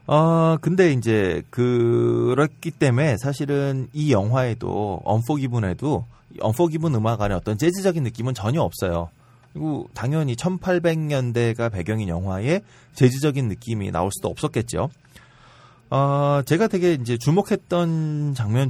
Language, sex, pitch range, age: Korean, male, 110-155 Hz, 30-49